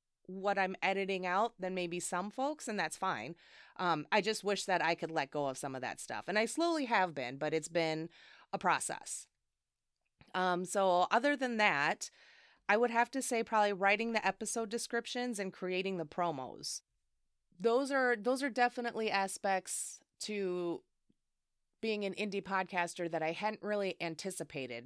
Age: 30-49